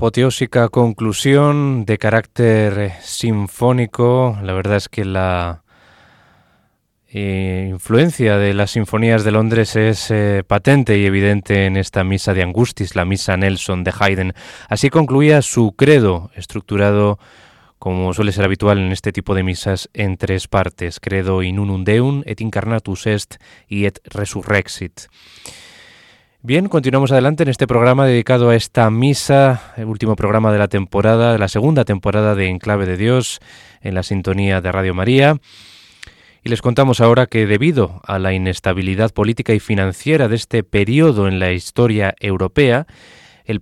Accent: Spanish